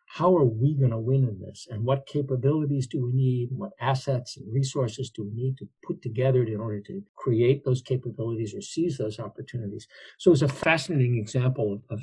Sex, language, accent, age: male, English, American, 60-79